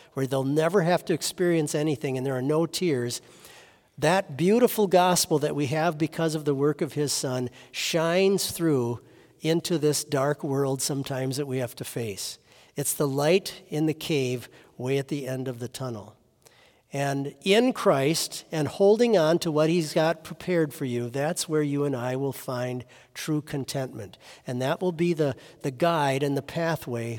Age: 50-69